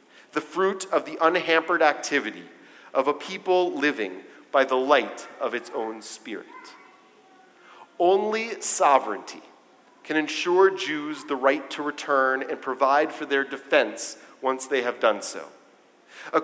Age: 40-59